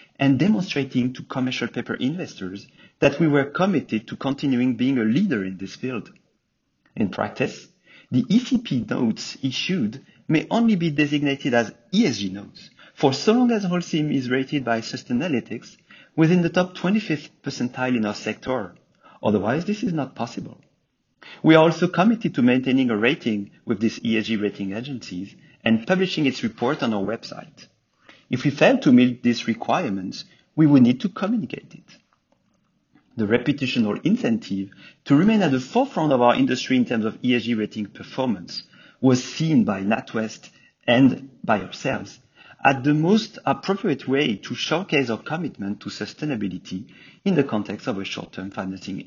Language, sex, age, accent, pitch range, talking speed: English, male, 40-59, French, 115-165 Hz, 160 wpm